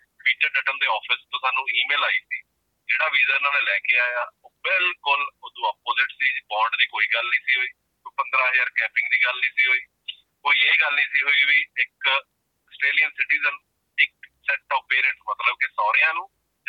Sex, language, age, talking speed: male, Punjabi, 40-59, 190 wpm